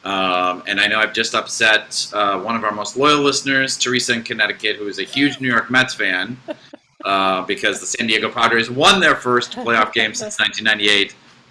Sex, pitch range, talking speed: male, 95-130 Hz, 200 wpm